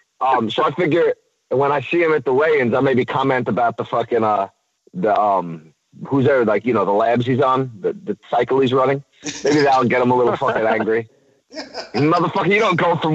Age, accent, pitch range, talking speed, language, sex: 30-49, American, 120-175 Hz, 215 wpm, English, male